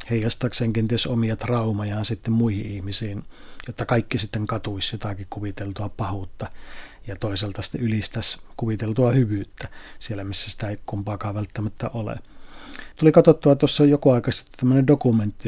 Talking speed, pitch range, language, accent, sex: 125 wpm, 110-130 Hz, Finnish, native, male